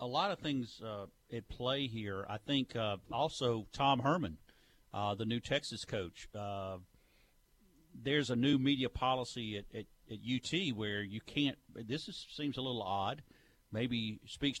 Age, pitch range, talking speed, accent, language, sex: 50-69, 115-140 Hz, 170 wpm, American, English, male